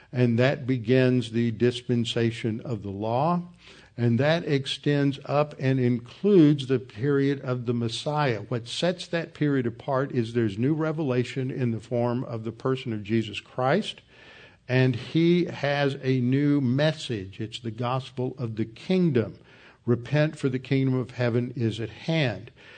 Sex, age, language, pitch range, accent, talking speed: male, 50-69, English, 115-140 Hz, American, 155 wpm